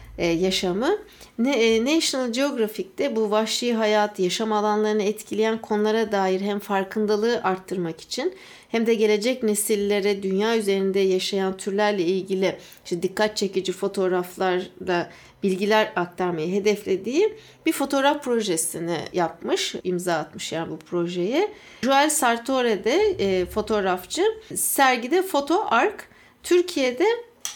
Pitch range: 195-275 Hz